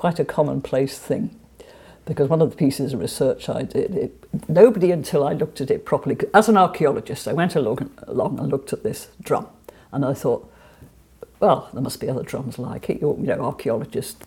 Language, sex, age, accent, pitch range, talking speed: English, female, 50-69, British, 135-180 Hz, 195 wpm